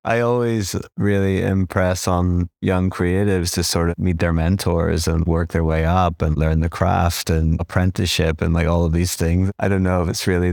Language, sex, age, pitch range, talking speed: English, male, 30-49, 80-90 Hz, 205 wpm